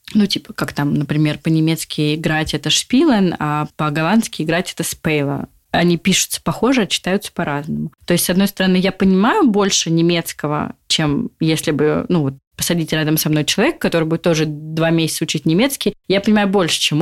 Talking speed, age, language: 175 wpm, 20-39, Russian